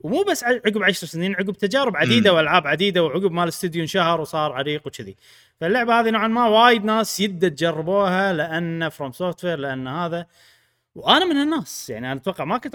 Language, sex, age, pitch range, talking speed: Arabic, male, 30-49, 125-195 Hz, 180 wpm